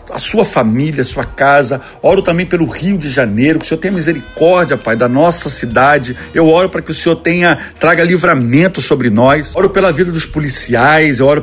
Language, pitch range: Portuguese, 140-180 Hz